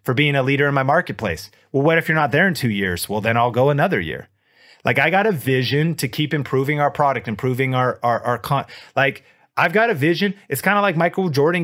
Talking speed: 245 wpm